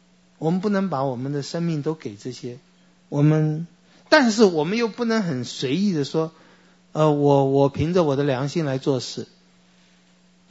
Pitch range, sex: 115-170 Hz, male